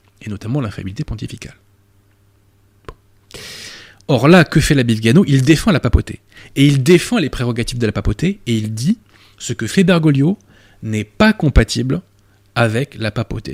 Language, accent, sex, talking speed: French, French, male, 155 wpm